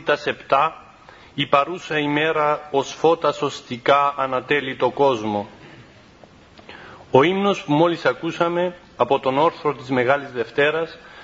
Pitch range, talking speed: 130-165 Hz, 110 wpm